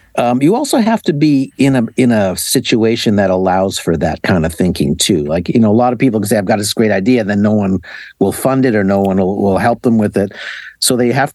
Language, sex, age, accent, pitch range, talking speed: English, male, 60-79, American, 100-125 Hz, 270 wpm